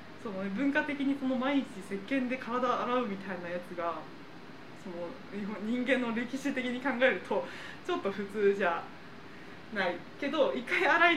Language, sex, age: Japanese, female, 20-39